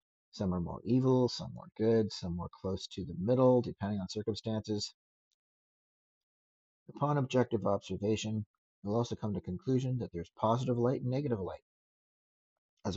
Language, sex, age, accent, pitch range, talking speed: English, male, 50-69, American, 95-125 Hz, 150 wpm